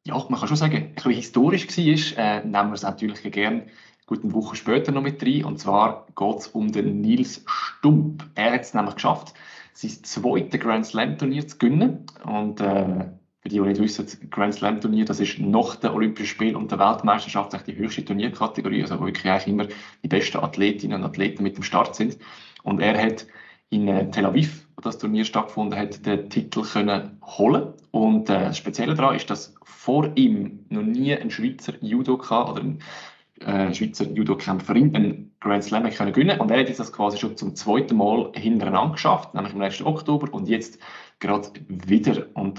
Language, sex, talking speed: German, male, 185 wpm